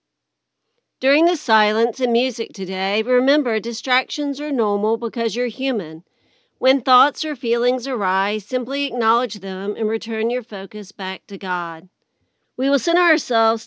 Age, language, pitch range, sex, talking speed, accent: 40-59, English, 200-250 Hz, female, 140 wpm, American